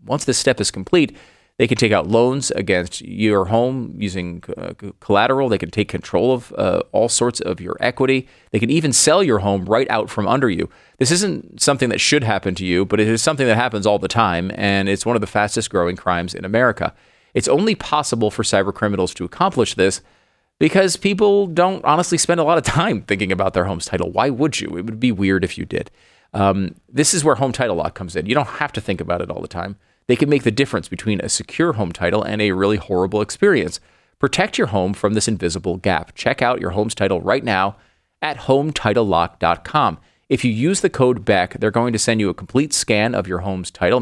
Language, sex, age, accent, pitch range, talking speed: English, male, 30-49, American, 95-130 Hz, 225 wpm